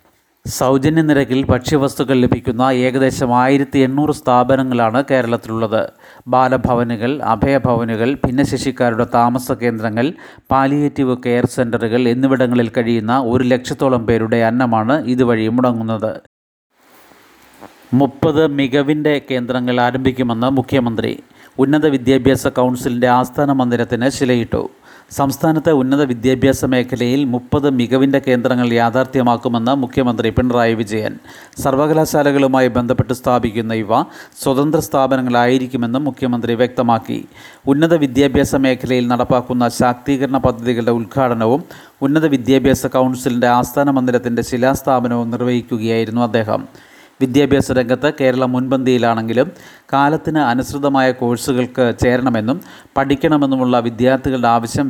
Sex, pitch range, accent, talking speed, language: male, 120-135 Hz, native, 85 wpm, Malayalam